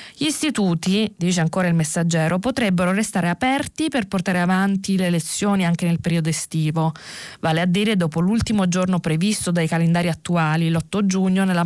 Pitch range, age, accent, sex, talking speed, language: 160-200 Hz, 20-39, native, female, 160 wpm, Italian